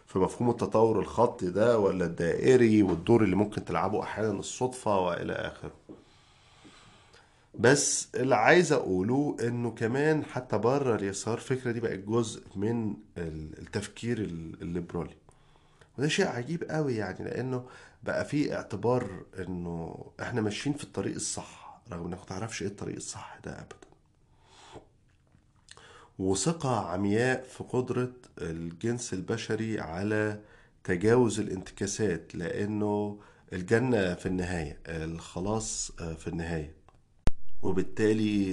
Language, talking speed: Arabic, 110 wpm